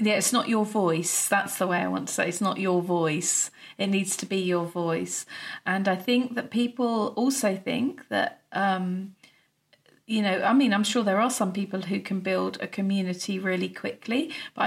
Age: 40-59